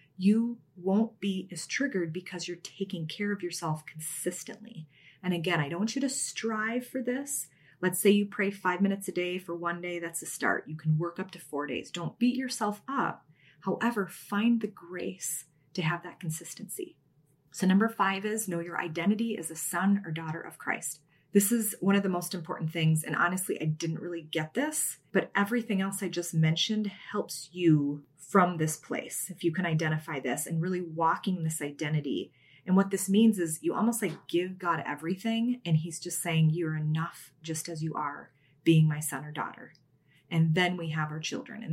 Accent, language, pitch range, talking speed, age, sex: American, English, 160-200 Hz, 200 wpm, 30-49, female